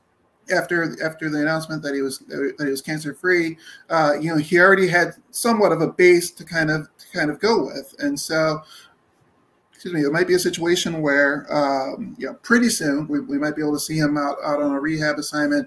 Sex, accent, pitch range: male, American, 150-190 Hz